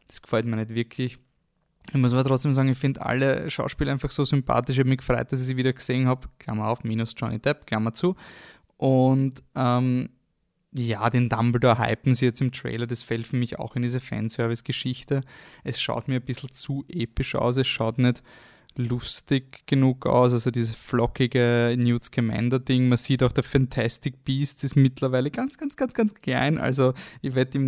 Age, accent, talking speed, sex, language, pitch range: 20-39, German, 190 wpm, male, German, 115-135 Hz